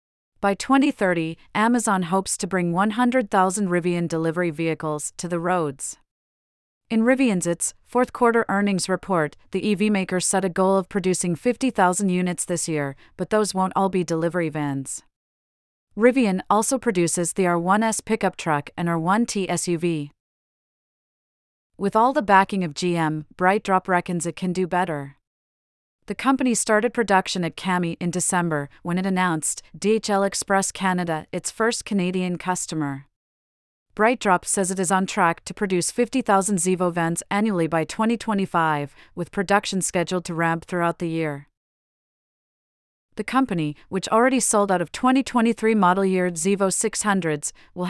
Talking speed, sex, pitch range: 140 wpm, female, 170-205 Hz